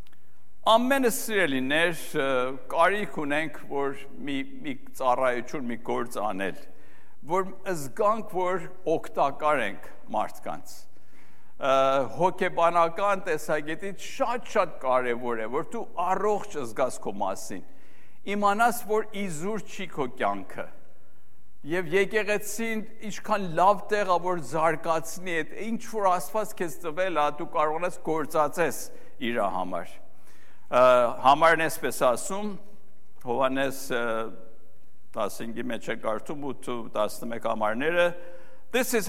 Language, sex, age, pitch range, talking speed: English, male, 60-79, 135-205 Hz, 65 wpm